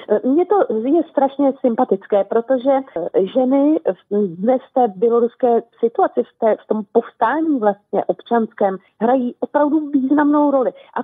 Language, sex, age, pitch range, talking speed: Slovak, female, 40-59, 230-285 Hz, 125 wpm